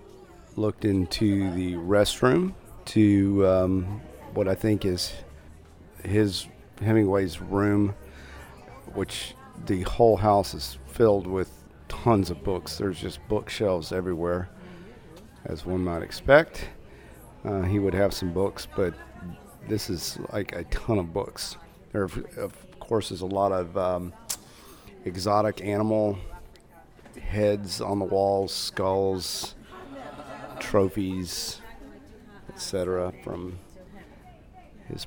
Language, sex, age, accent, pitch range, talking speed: English, male, 40-59, American, 90-105 Hz, 110 wpm